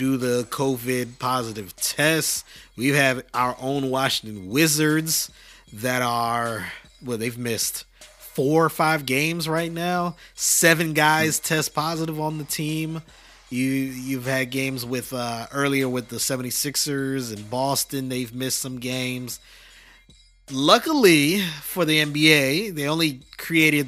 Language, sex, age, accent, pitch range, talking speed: English, male, 30-49, American, 125-150 Hz, 130 wpm